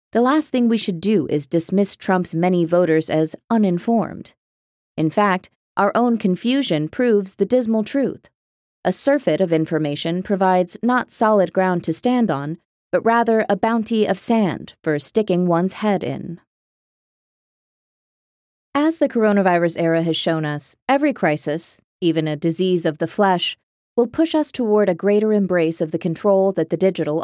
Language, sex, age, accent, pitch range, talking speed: English, female, 30-49, American, 165-225 Hz, 160 wpm